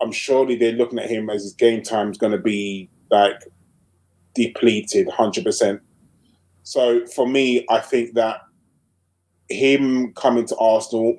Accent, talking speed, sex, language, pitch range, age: British, 145 wpm, male, English, 105-140 Hz, 20-39